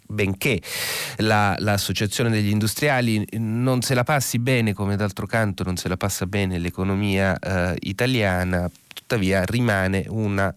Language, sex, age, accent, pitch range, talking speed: Italian, male, 30-49, native, 90-115 Hz, 125 wpm